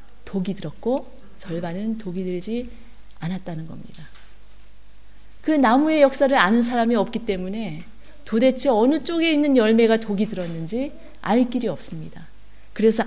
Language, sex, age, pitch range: Korean, female, 30-49, 170-235 Hz